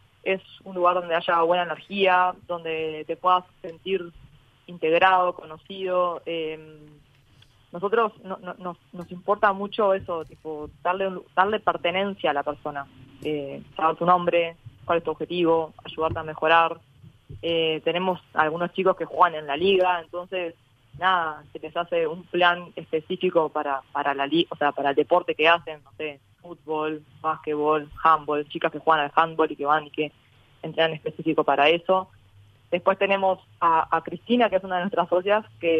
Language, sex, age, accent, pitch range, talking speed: Spanish, female, 20-39, Argentinian, 150-185 Hz, 165 wpm